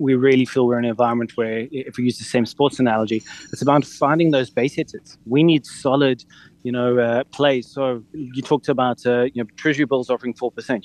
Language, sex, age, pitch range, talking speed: English, male, 30-49, 125-155 Hz, 220 wpm